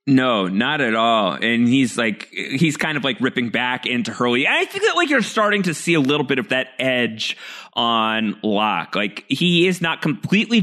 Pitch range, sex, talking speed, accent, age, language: 115-155 Hz, male, 205 wpm, American, 30-49, English